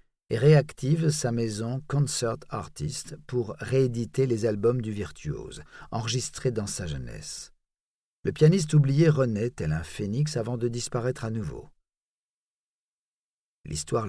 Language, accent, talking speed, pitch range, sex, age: French, French, 125 wpm, 110-150 Hz, male, 50-69